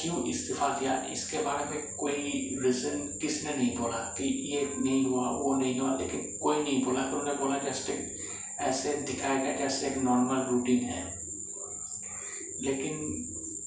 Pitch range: 125-140 Hz